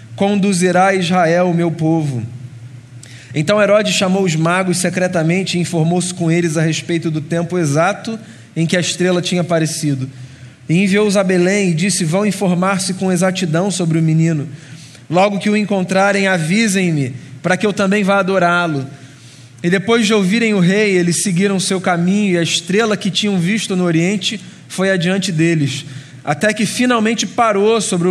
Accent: Brazilian